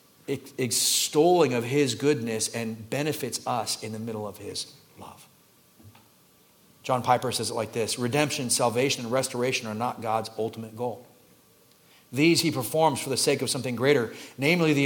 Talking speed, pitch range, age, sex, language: 160 wpm, 140-195 Hz, 40-59, male, English